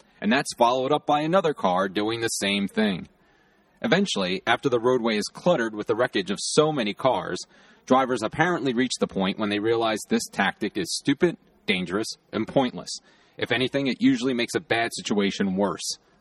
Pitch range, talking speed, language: 130-180 Hz, 180 wpm, English